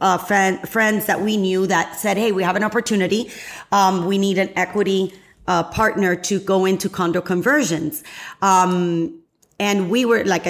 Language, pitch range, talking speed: English, 185-215 Hz, 170 wpm